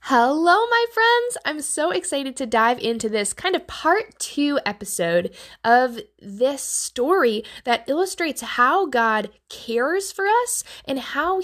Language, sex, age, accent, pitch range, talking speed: English, female, 10-29, American, 205-290 Hz, 140 wpm